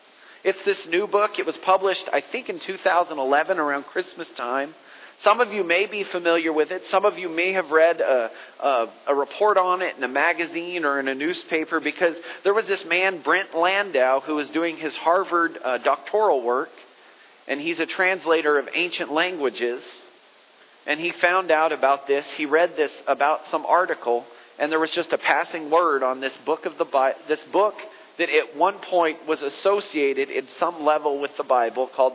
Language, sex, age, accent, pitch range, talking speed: English, male, 40-59, American, 140-185 Hz, 190 wpm